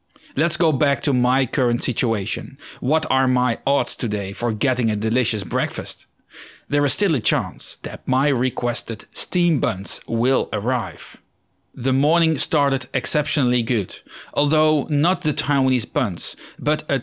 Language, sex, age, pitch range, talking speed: English, male, 40-59, 120-145 Hz, 145 wpm